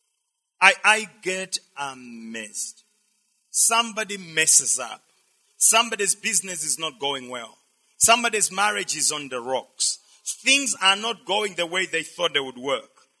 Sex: male